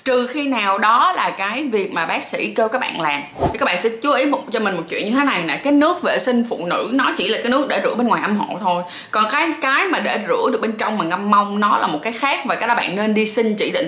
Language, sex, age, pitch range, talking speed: Vietnamese, female, 20-39, 195-255 Hz, 310 wpm